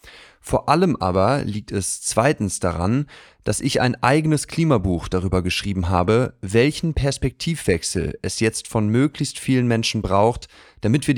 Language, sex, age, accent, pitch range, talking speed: German, male, 30-49, German, 100-140 Hz, 140 wpm